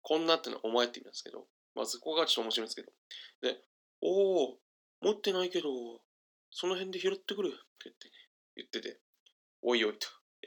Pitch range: 130-190 Hz